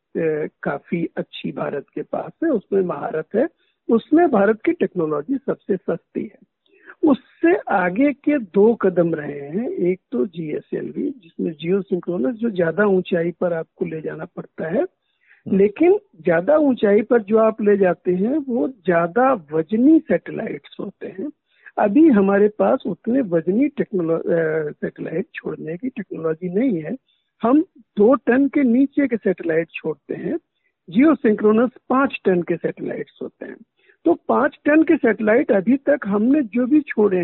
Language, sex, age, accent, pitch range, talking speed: Hindi, male, 60-79, native, 180-285 Hz, 150 wpm